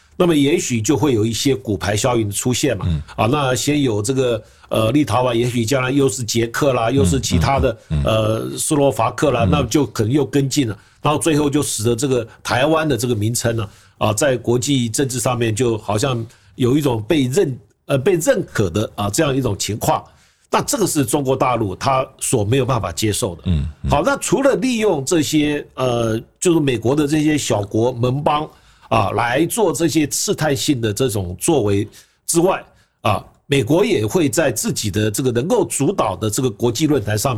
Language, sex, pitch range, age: Chinese, male, 115-150 Hz, 50-69